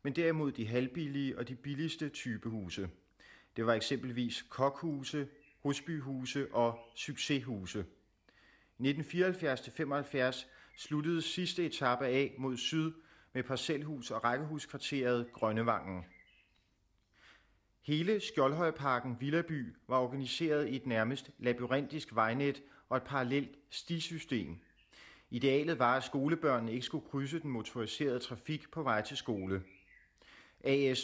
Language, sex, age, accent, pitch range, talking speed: Danish, male, 30-49, native, 115-145 Hz, 110 wpm